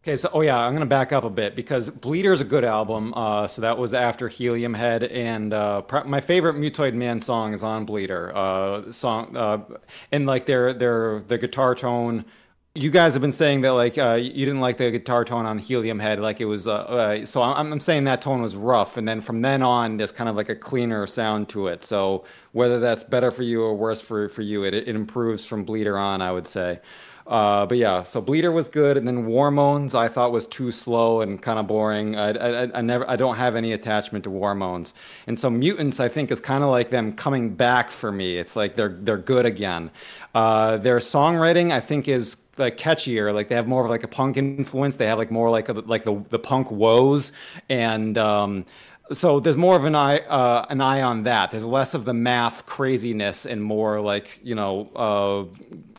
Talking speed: 225 wpm